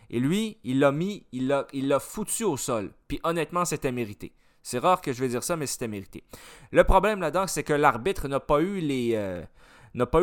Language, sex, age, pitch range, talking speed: French, male, 30-49, 130-185 Hz, 225 wpm